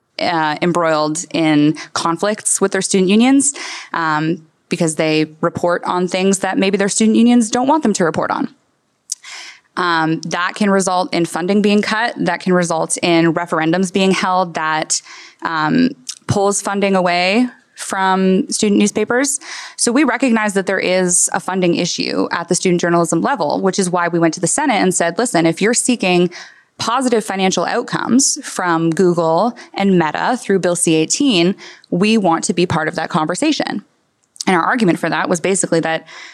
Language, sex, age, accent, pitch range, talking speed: English, female, 20-39, American, 170-220 Hz, 170 wpm